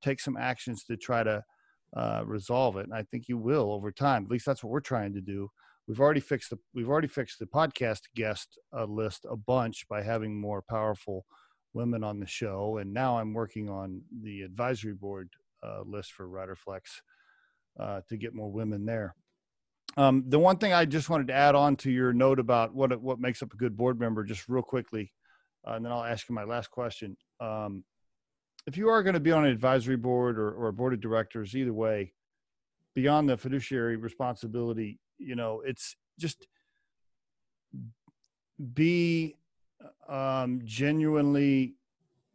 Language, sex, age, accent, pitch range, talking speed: English, male, 40-59, American, 110-140 Hz, 185 wpm